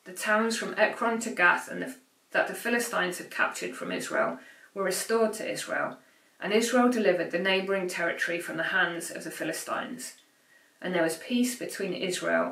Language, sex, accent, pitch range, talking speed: English, female, British, 180-245 Hz, 175 wpm